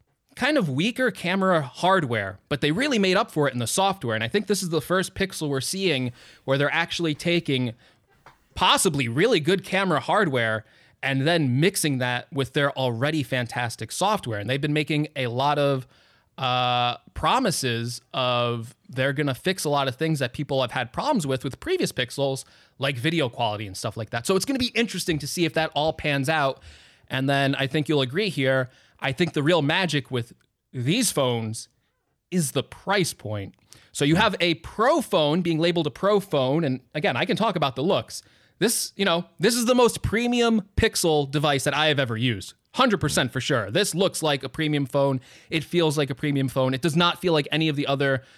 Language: English